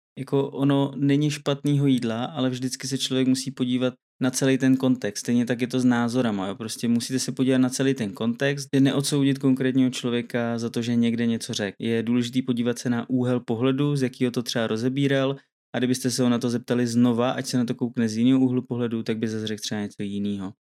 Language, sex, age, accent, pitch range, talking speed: Czech, male, 20-39, native, 120-135 Hz, 215 wpm